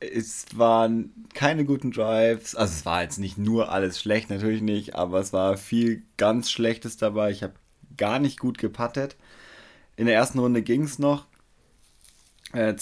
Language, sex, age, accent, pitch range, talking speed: German, male, 30-49, German, 105-120 Hz, 170 wpm